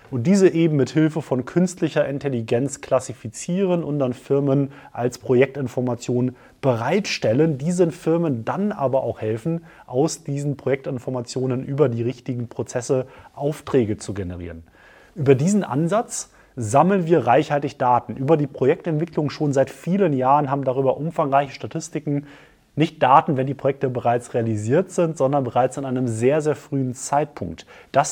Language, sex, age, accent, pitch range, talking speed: German, male, 30-49, German, 125-155 Hz, 140 wpm